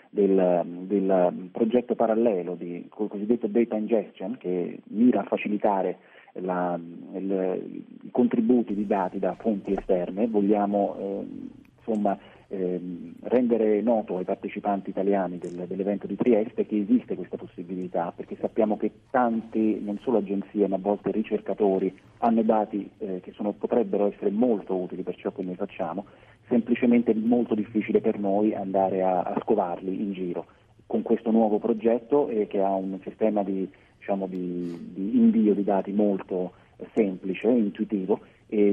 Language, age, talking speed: Italian, 30-49, 140 wpm